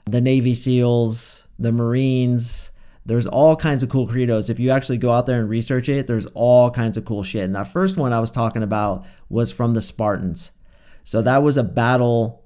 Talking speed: 205 wpm